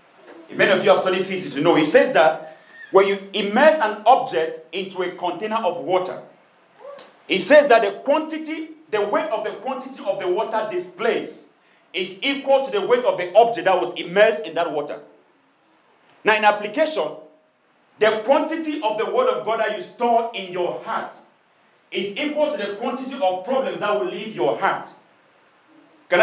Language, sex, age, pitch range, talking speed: English, male, 40-59, 190-275 Hz, 180 wpm